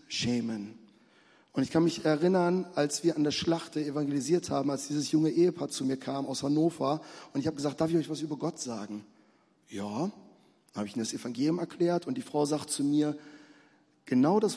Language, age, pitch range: German, 40-59, 130-165 Hz